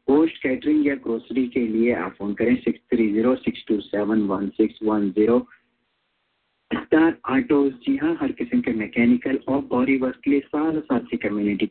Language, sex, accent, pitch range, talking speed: English, male, Indian, 110-150 Hz, 90 wpm